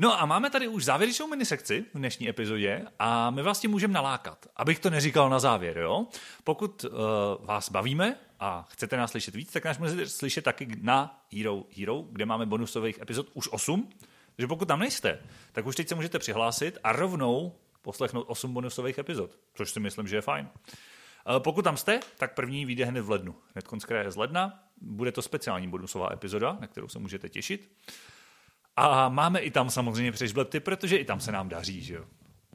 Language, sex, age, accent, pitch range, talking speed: Czech, male, 30-49, native, 110-165 Hz, 190 wpm